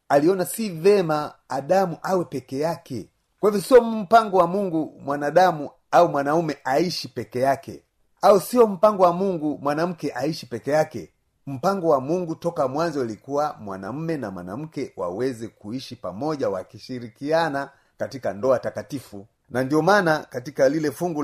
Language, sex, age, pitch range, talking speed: Swahili, male, 30-49, 120-170 Hz, 140 wpm